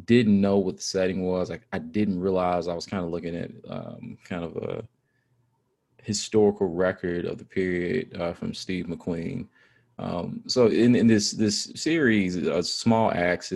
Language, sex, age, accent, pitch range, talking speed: English, male, 20-39, American, 90-110 Hz, 175 wpm